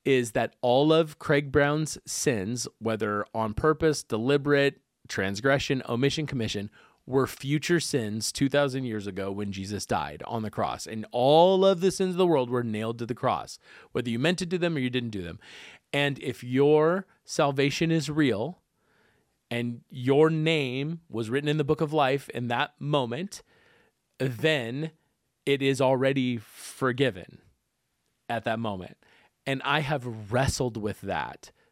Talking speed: 155 wpm